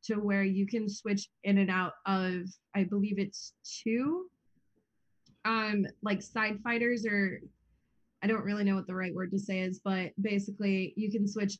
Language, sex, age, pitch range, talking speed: English, female, 20-39, 195-225 Hz, 175 wpm